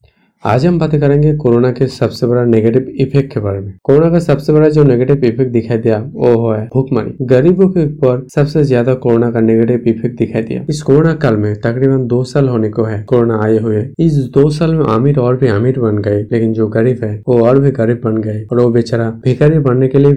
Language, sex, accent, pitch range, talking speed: Hindi, male, native, 115-135 Hz, 225 wpm